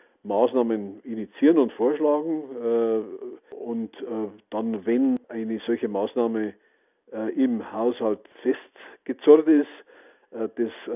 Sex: male